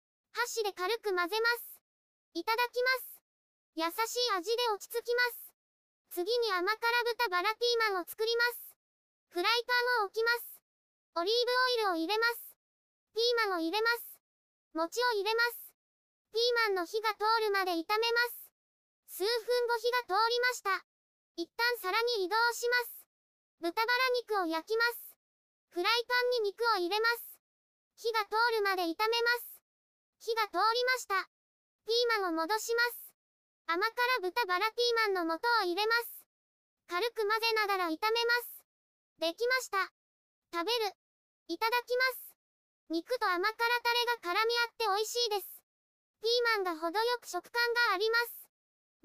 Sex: male